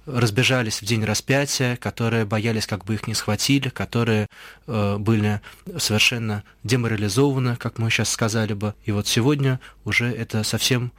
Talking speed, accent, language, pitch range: 145 wpm, native, Russian, 105-125 Hz